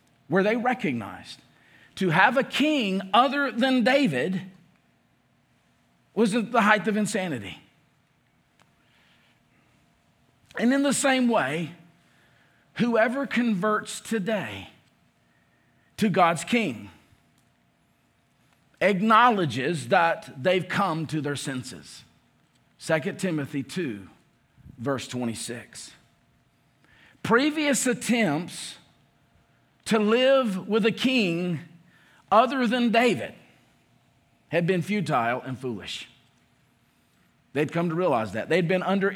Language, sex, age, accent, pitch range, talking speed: English, male, 50-69, American, 140-230 Hz, 95 wpm